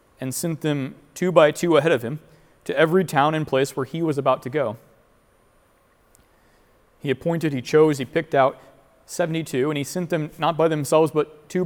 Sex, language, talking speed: male, English, 190 wpm